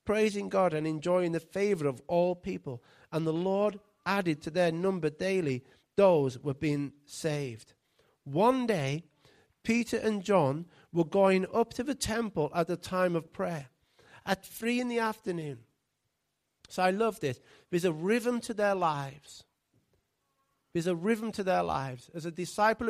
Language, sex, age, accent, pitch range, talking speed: English, male, 40-59, British, 155-200 Hz, 160 wpm